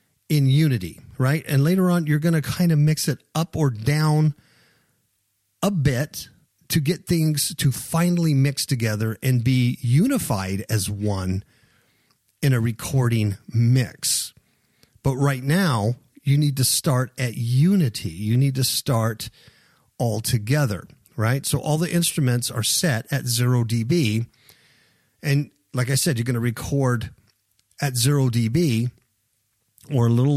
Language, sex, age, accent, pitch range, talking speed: English, male, 50-69, American, 120-155 Hz, 145 wpm